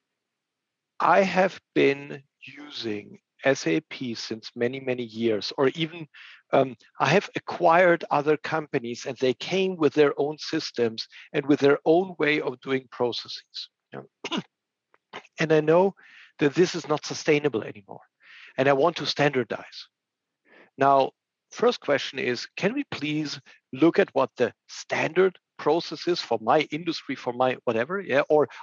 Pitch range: 130-165 Hz